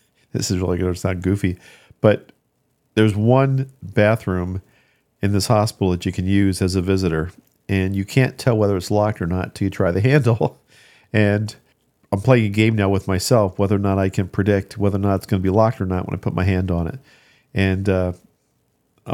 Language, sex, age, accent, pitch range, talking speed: English, male, 50-69, American, 95-115 Hz, 215 wpm